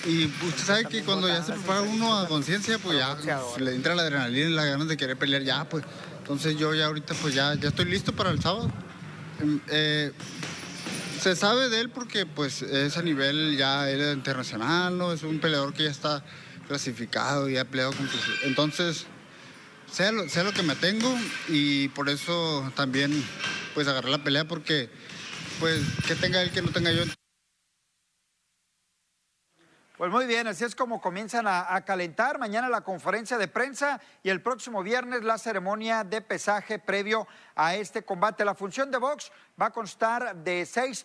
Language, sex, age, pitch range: Spanish, male, 30-49, 155-220 Hz